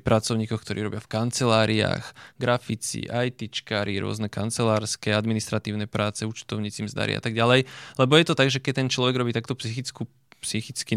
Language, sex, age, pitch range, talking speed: Slovak, male, 20-39, 115-130 Hz, 150 wpm